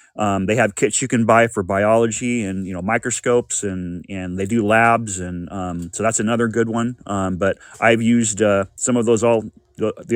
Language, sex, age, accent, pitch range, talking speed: English, male, 30-49, American, 95-120 Hz, 215 wpm